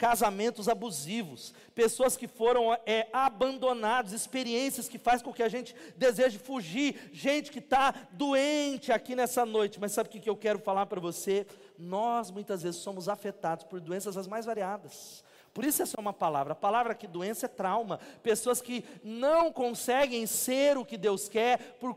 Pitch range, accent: 200-240 Hz, Brazilian